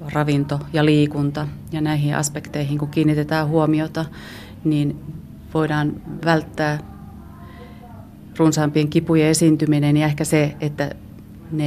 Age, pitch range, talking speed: 30-49, 145-160 Hz, 105 wpm